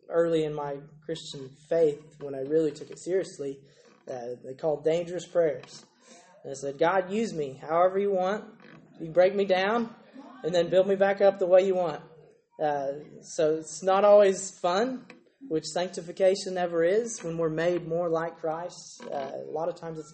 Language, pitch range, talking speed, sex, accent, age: English, 150-180 Hz, 180 wpm, male, American, 20-39